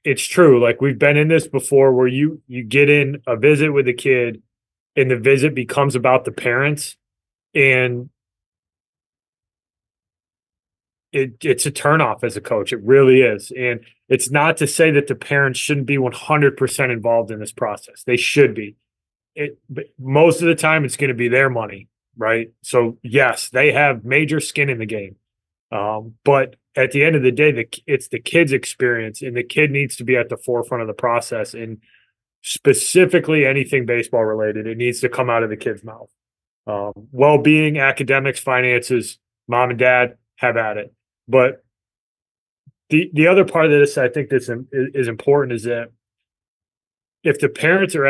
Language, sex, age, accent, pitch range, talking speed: English, male, 30-49, American, 115-145 Hz, 180 wpm